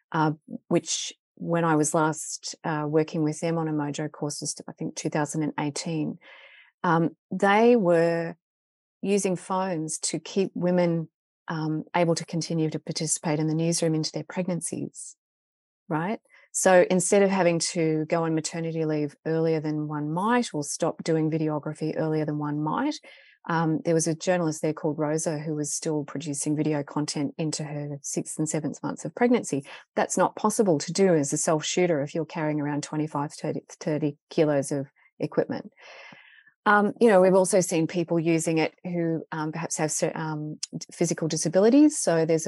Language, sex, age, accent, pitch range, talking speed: English, female, 30-49, Australian, 155-175 Hz, 165 wpm